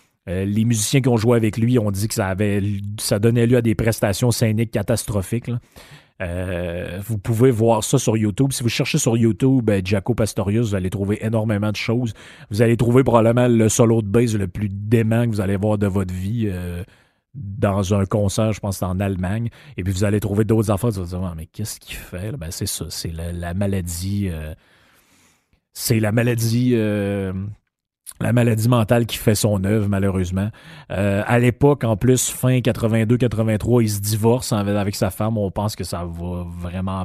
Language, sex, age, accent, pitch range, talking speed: French, male, 30-49, Canadian, 100-120 Hz, 195 wpm